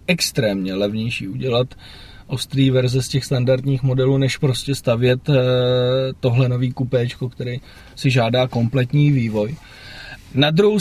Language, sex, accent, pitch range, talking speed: Czech, male, native, 125-150 Hz, 120 wpm